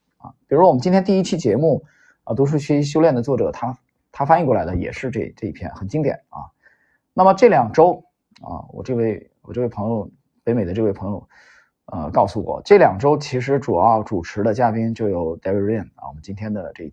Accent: native